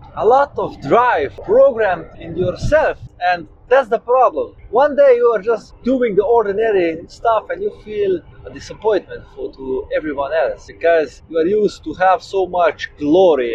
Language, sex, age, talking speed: English, male, 30-49, 170 wpm